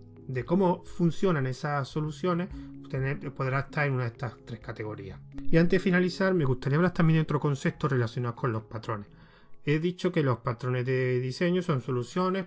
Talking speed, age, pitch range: 185 wpm, 30-49, 125-175 Hz